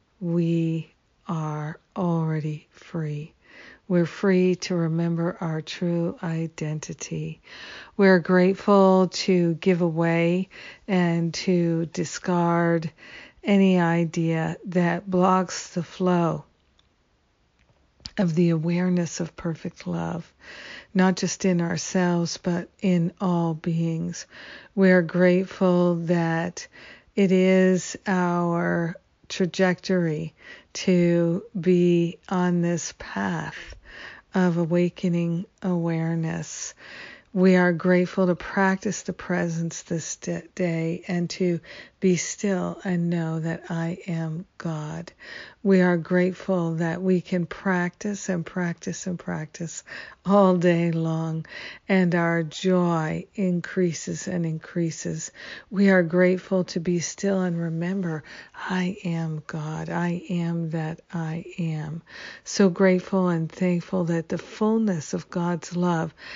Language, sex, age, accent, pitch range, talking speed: English, female, 50-69, American, 165-185 Hz, 110 wpm